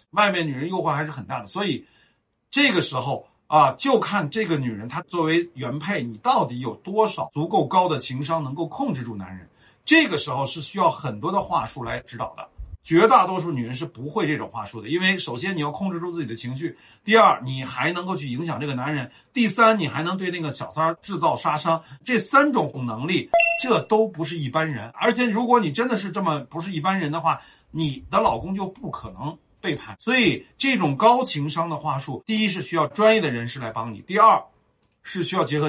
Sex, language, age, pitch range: male, Chinese, 50-69, 140-200 Hz